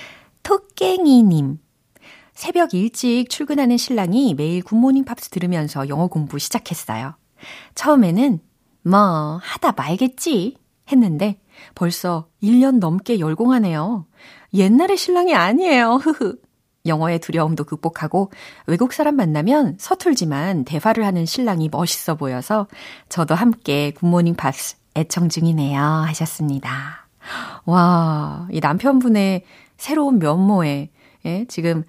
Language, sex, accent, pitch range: Korean, female, native, 150-225 Hz